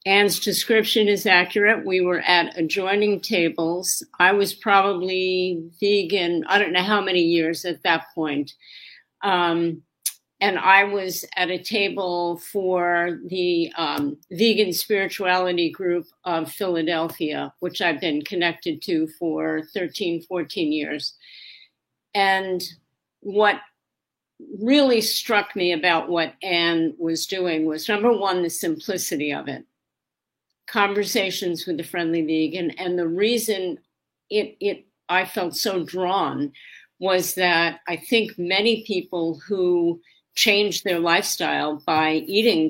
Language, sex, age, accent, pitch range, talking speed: English, female, 50-69, American, 165-205 Hz, 125 wpm